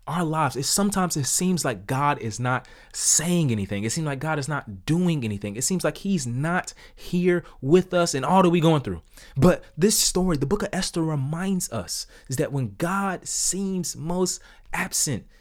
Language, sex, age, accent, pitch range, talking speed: English, male, 20-39, American, 100-135 Hz, 195 wpm